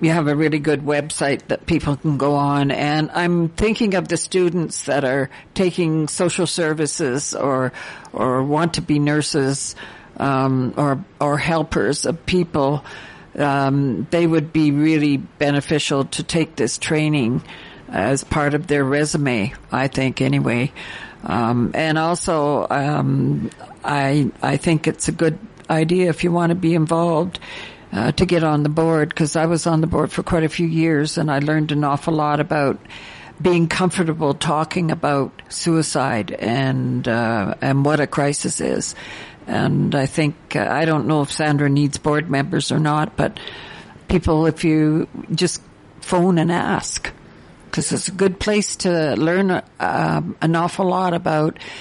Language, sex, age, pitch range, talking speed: English, female, 60-79, 140-170 Hz, 160 wpm